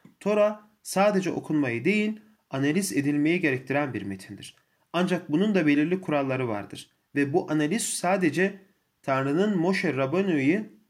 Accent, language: native, Turkish